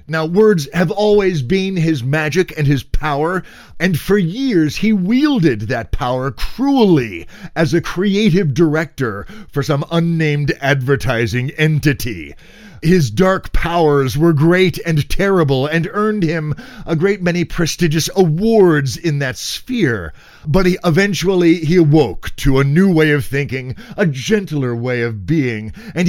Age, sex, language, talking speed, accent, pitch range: 40-59, male, English, 140 wpm, American, 140-185 Hz